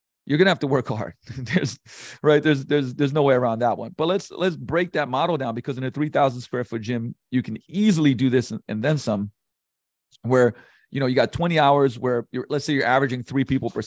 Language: English